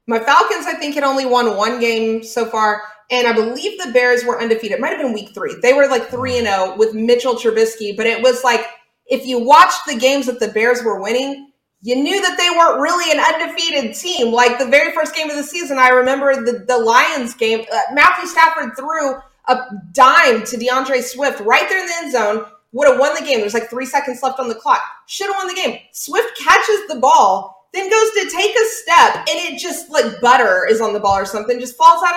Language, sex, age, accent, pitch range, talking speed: English, female, 30-49, American, 235-335 Hz, 235 wpm